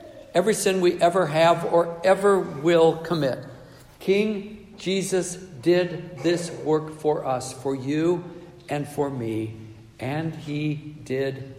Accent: American